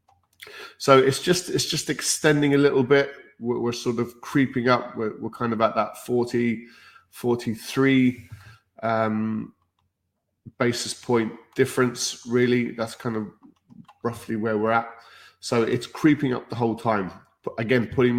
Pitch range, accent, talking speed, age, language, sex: 110-130 Hz, British, 150 wpm, 20-39, English, male